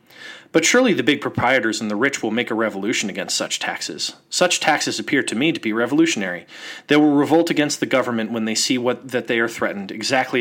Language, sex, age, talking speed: English, male, 30-49, 215 wpm